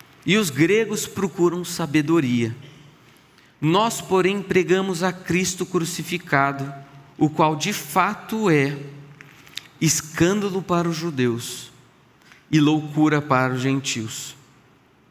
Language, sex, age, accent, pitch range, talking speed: Portuguese, male, 40-59, Brazilian, 140-190 Hz, 100 wpm